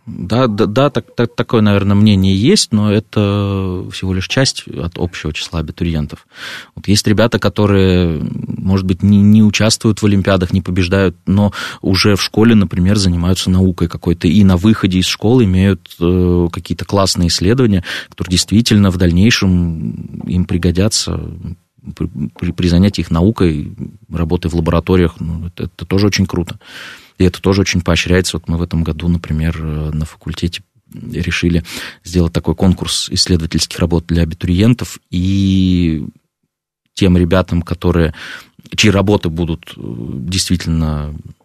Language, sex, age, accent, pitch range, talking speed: Russian, male, 20-39, native, 85-100 Hz, 140 wpm